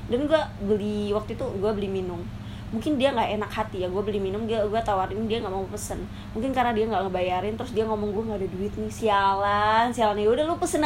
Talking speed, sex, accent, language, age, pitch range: 230 wpm, female, native, Indonesian, 20-39, 210-250 Hz